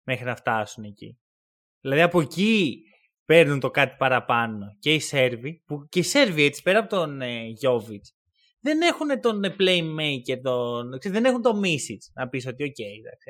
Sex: male